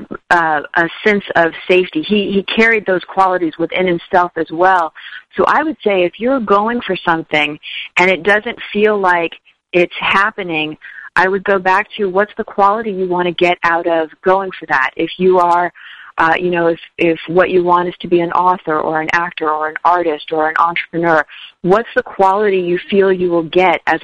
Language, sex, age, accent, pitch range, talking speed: English, female, 40-59, American, 165-195 Hz, 200 wpm